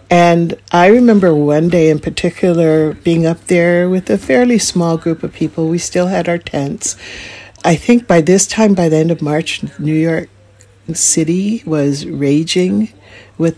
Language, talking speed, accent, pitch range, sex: English, 170 wpm, American, 145-170 Hz, female